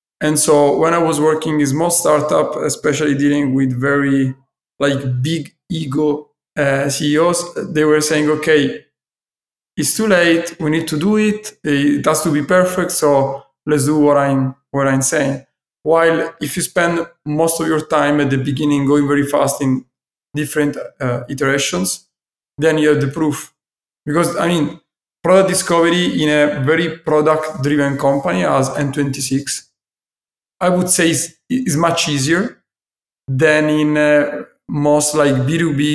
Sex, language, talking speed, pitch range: male, Italian, 155 wpm, 140-160 Hz